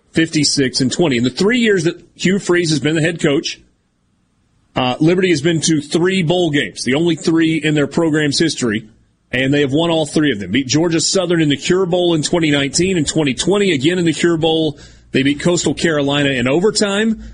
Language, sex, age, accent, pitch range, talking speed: English, male, 30-49, American, 135-185 Hz, 210 wpm